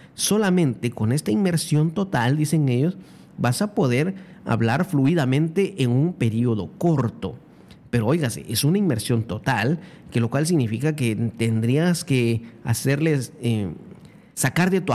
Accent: Mexican